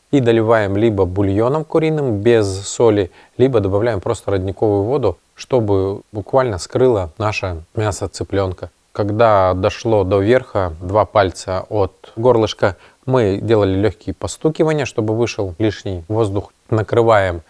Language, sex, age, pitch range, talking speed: Russian, male, 20-39, 100-120 Hz, 120 wpm